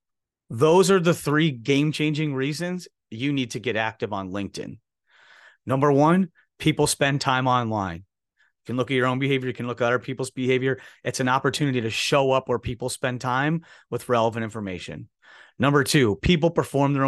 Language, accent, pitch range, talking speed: English, American, 125-150 Hz, 180 wpm